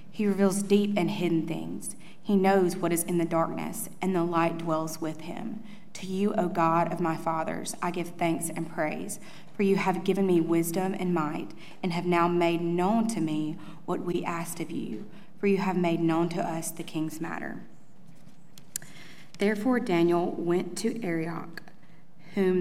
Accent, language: American, English